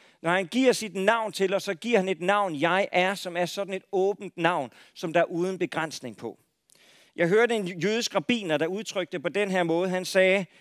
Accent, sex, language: native, male, Danish